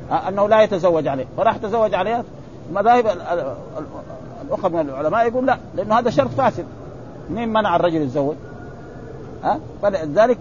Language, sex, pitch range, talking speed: Arabic, male, 155-210 Hz, 135 wpm